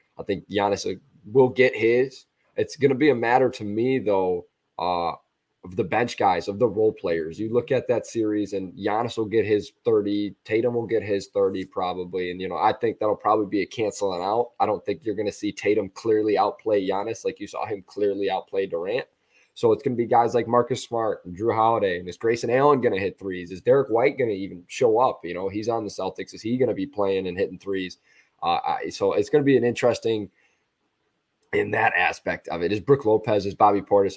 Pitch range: 100-155 Hz